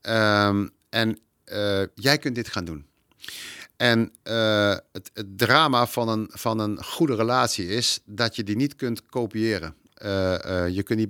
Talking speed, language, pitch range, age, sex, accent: 160 wpm, Dutch, 100-130 Hz, 50-69, male, Dutch